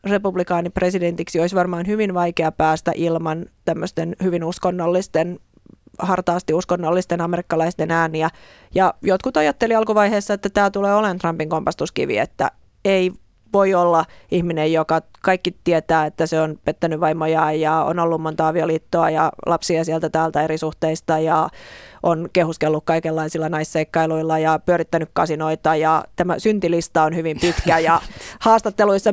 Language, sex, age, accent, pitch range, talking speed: Finnish, female, 30-49, native, 160-195 Hz, 135 wpm